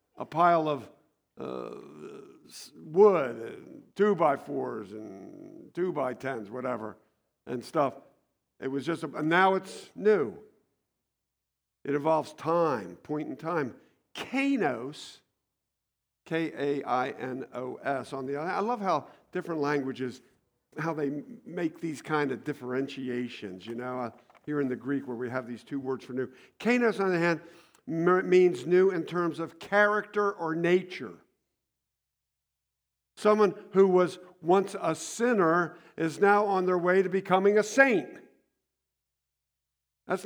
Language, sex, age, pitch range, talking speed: English, male, 50-69, 130-185 Hz, 130 wpm